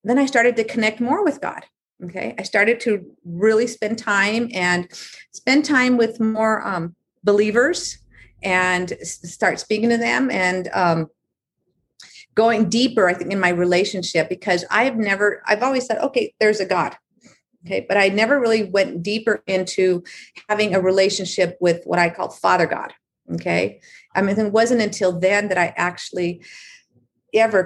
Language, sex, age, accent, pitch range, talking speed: English, female, 40-59, American, 180-225 Hz, 160 wpm